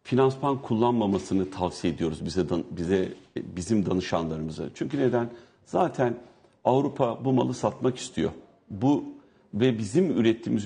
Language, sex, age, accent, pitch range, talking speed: Turkish, male, 60-79, native, 95-120 Hz, 115 wpm